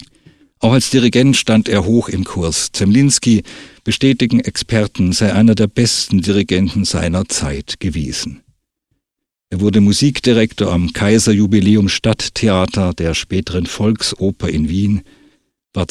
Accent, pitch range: German, 90-115 Hz